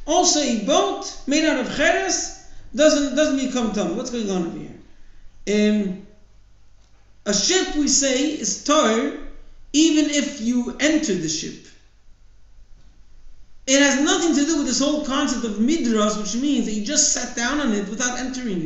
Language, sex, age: English, male, 50-69